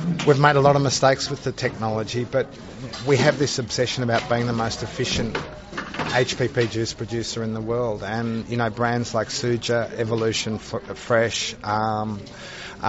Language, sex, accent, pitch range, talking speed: English, male, Australian, 110-130 Hz, 165 wpm